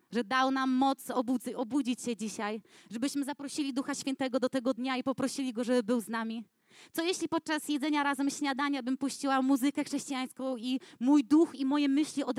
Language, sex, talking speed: Polish, female, 185 wpm